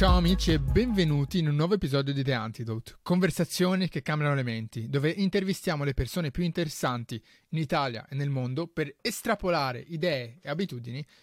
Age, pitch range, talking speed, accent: 30-49, 140-195 Hz, 170 wpm, native